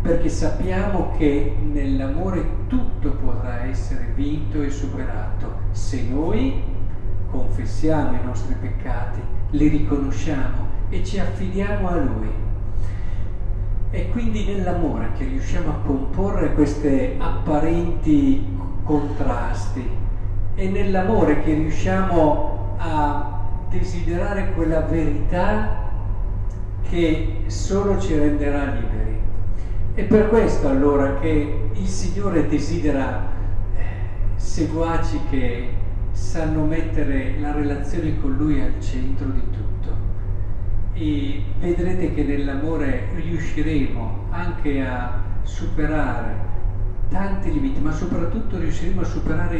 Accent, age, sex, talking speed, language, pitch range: native, 50-69, male, 100 wpm, Italian, 95-105 Hz